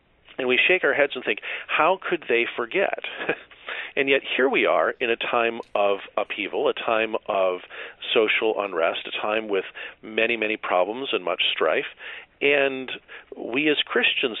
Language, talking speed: English, 160 wpm